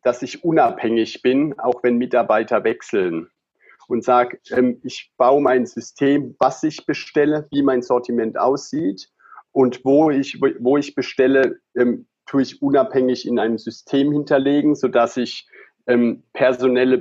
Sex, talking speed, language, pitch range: male, 135 wpm, German, 120-160 Hz